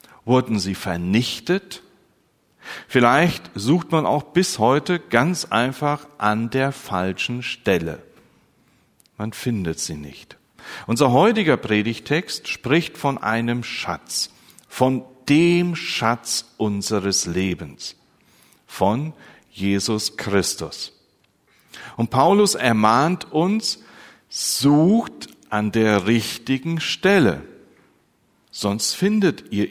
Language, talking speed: German, 95 wpm